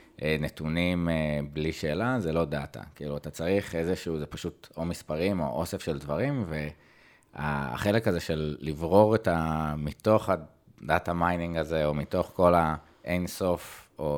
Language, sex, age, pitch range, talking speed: Hebrew, male, 30-49, 75-90 Hz, 140 wpm